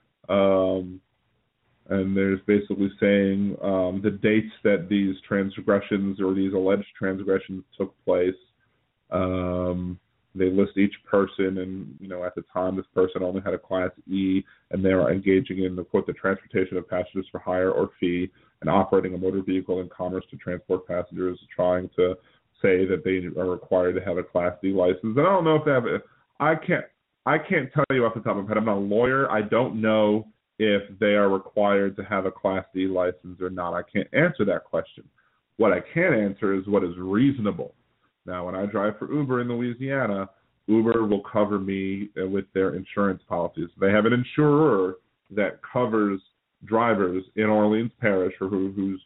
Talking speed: 190 wpm